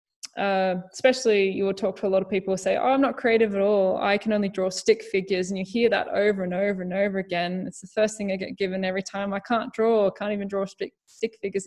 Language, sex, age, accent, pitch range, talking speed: English, female, 20-39, Australian, 195-225 Hz, 255 wpm